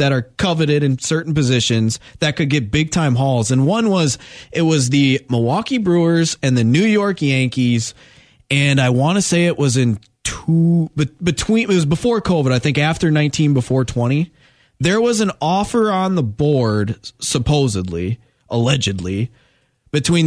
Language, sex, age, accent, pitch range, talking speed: English, male, 20-39, American, 125-155 Hz, 165 wpm